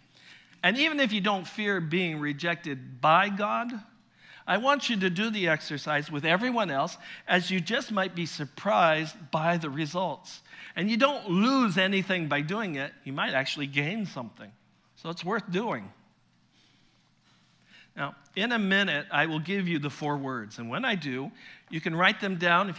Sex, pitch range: male, 155-190 Hz